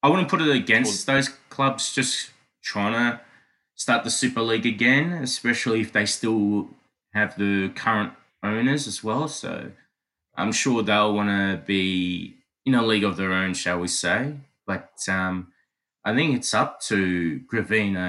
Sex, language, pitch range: male, English, 95-120 Hz